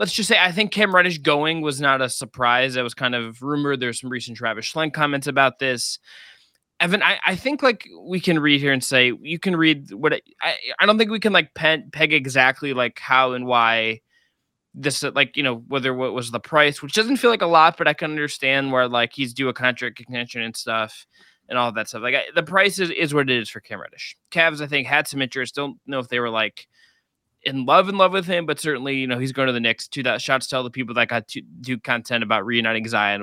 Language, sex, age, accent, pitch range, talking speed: English, male, 20-39, American, 125-155 Hz, 255 wpm